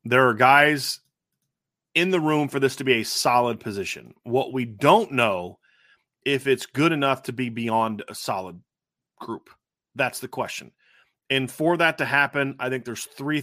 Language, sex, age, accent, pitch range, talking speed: English, male, 30-49, American, 115-135 Hz, 175 wpm